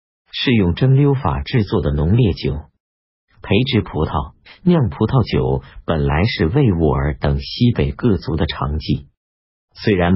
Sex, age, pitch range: male, 50-69, 75-100 Hz